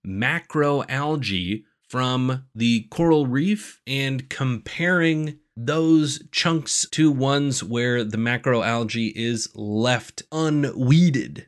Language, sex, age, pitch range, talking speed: English, male, 30-49, 115-155 Hz, 90 wpm